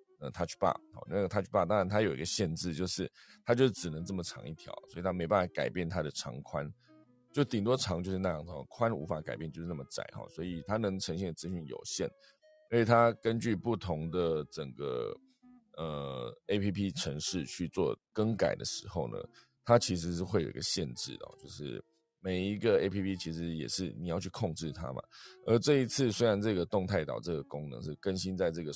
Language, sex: Chinese, male